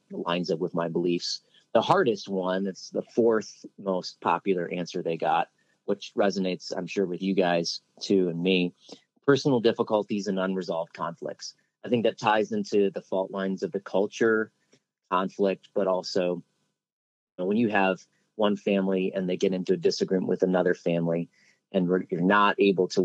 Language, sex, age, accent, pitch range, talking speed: English, male, 30-49, American, 95-105 Hz, 170 wpm